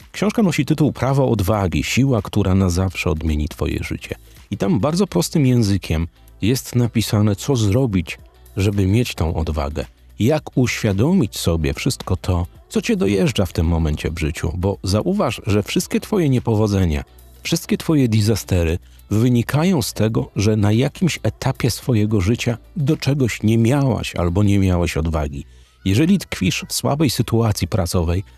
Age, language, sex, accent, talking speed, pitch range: 40-59, Polish, male, native, 150 wpm, 90-135 Hz